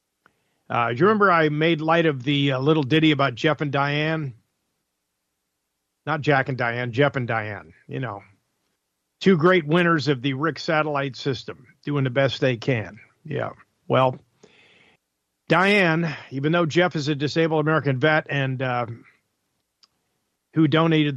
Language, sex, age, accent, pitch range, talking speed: English, male, 50-69, American, 115-150 Hz, 150 wpm